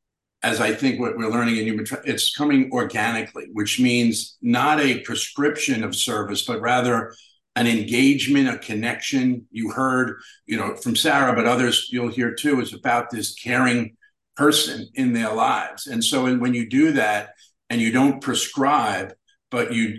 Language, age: English, 50-69